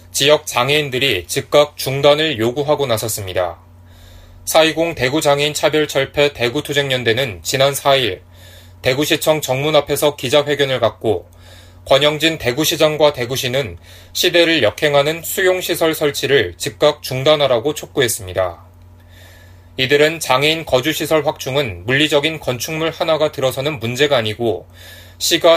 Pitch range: 105-155 Hz